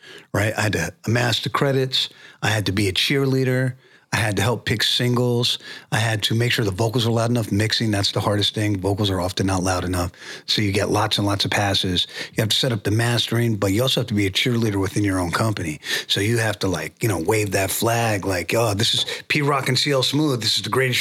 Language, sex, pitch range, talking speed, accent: English, male, 100-125 Hz, 255 wpm, American